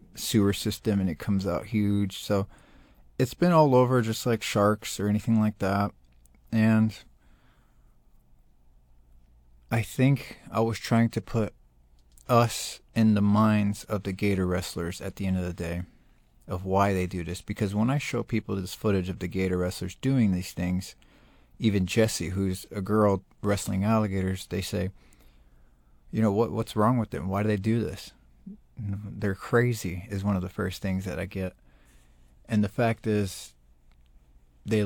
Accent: American